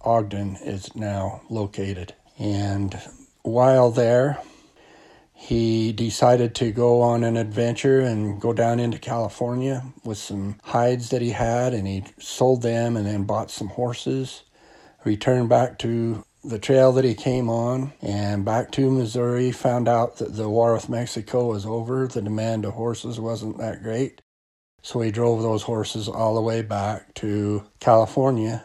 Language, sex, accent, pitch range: English, male, American, 105-120 Hz